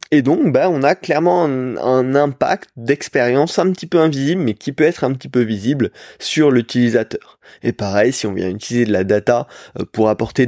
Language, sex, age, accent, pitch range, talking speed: French, male, 20-39, French, 115-150 Hz, 200 wpm